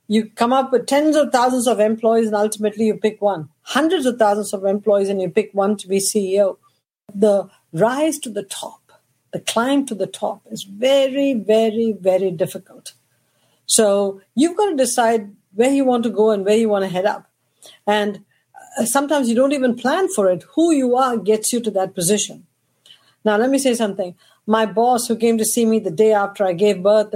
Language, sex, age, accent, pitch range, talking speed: English, female, 50-69, Indian, 195-260 Hz, 205 wpm